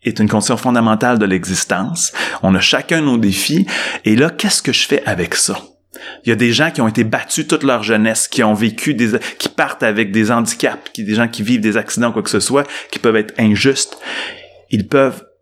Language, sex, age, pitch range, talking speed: French, male, 30-49, 105-120 Hz, 225 wpm